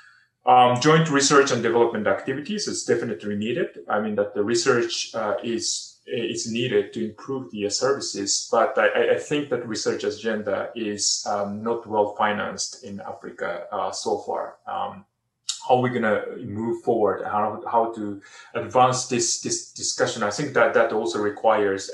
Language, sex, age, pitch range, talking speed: English, male, 30-49, 105-140 Hz, 165 wpm